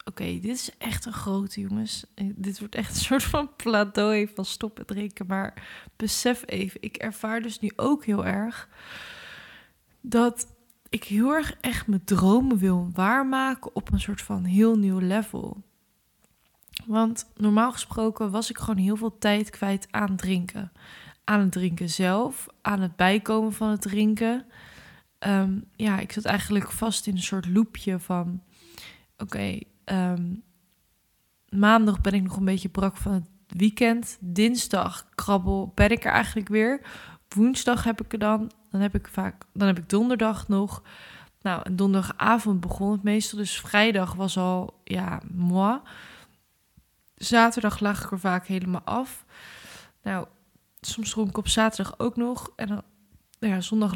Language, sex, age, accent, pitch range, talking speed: Dutch, female, 20-39, Dutch, 195-225 Hz, 160 wpm